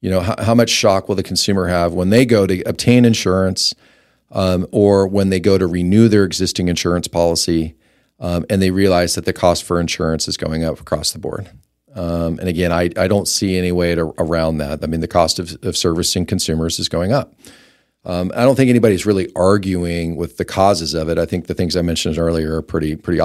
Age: 40-59